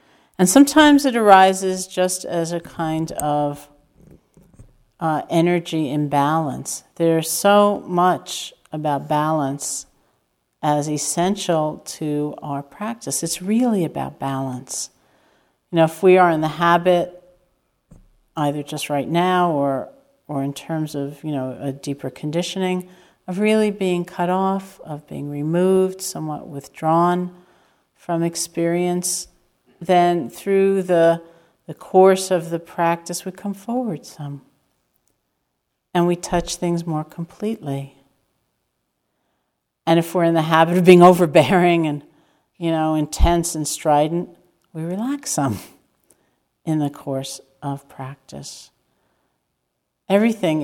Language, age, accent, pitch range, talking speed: English, 50-69, American, 150-180 Hz, 120 wpm